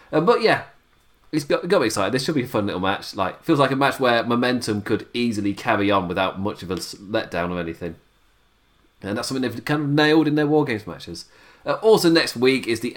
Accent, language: British, English